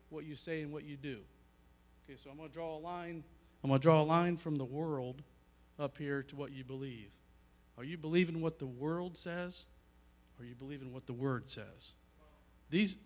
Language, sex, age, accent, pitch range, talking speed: English, male, 50-69, American, 115-165 Hz, 210 wpm